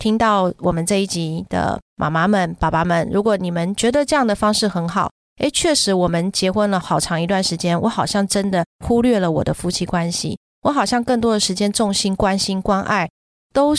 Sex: female